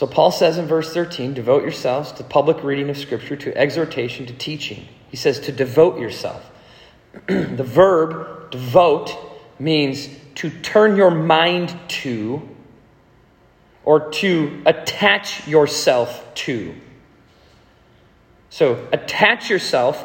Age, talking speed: 40-59, 115 wpm